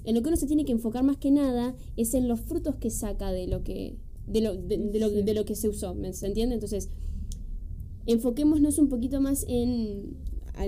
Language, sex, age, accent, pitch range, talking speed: Spanish, female, 10-29, Argentinian, 210-285 Hz, 220 wpm